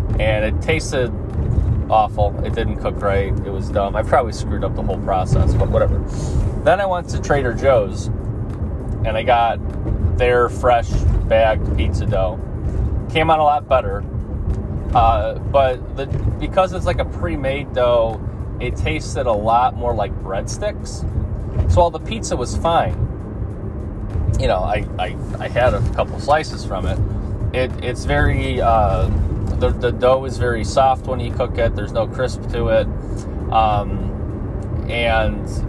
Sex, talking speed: male, 155 wpm